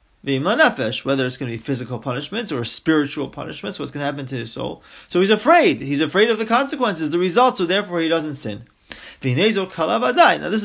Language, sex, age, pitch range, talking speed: English, male, 30-49, 135-200 Hz, 190 wpm